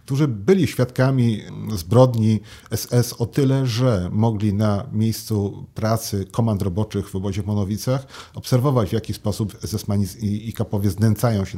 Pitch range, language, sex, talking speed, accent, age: 105-125 Hz, Polish, male, 140 wpm, native, 40-59